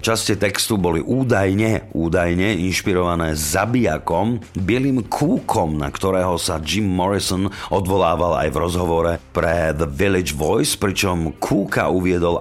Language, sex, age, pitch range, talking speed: Slovak, male, 50-69, 85-110 Hz, 120 wpm